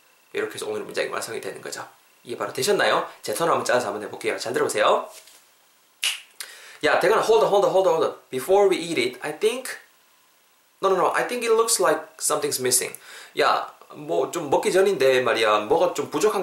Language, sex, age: Korean, male, 20-39